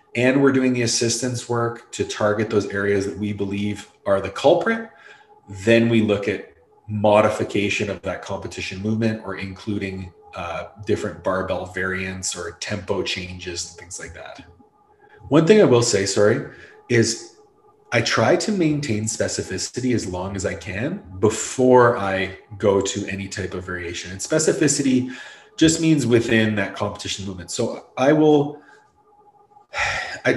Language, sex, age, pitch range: English, male, 30-49, 100-165 Hz